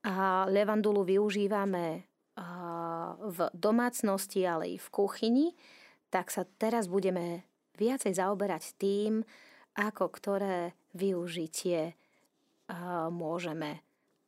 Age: 30-49